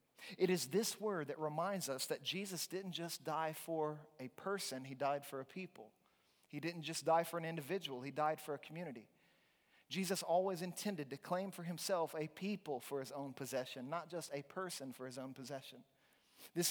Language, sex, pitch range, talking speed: English, male, 145-175 Hz, 195 wpm